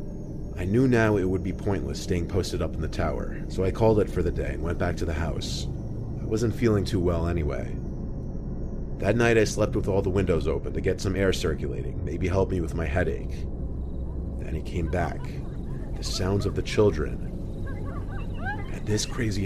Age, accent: 30-49, American